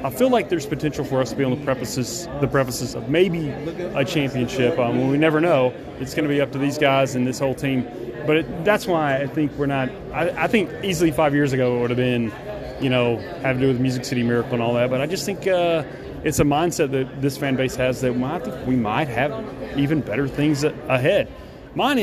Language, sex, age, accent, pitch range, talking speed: English, male, 30-49, American, 125-150 Hz, 245 wpm